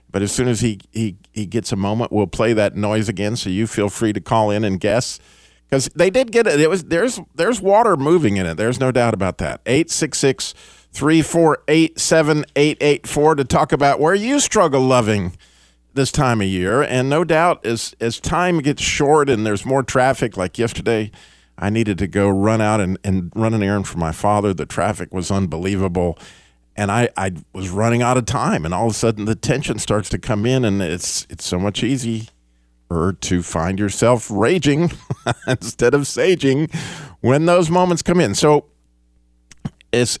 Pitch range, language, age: 95-135 Hz, English, 50-69